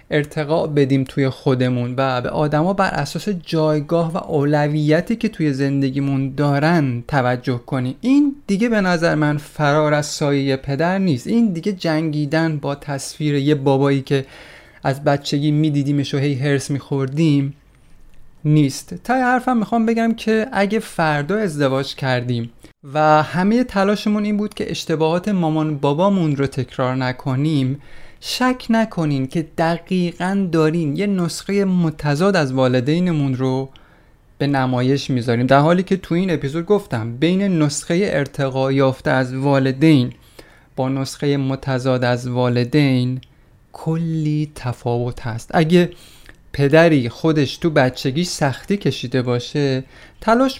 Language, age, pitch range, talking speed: Persian, 30-49, 135-175 Hz, 130 wpm